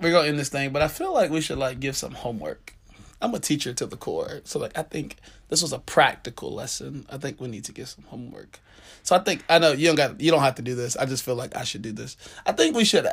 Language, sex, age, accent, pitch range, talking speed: English, male, 20-39, American, 110-140 Hz, 295 wpm